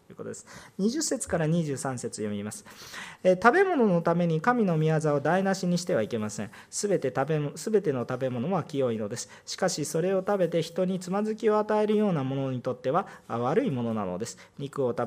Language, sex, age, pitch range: Japanese, male, 40-59, 135-190 Hz